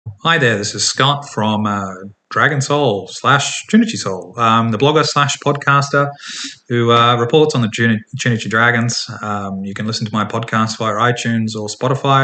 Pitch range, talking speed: 105-130 Hz, 175 wpm